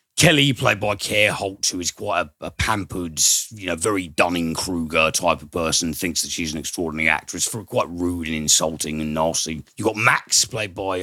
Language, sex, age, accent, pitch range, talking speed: English, male, 40-59, British, 80-100 Hz, 200 wpm